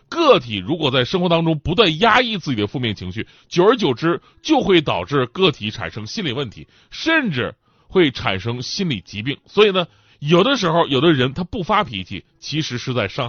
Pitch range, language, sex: 125-205 Hz, Chinese, male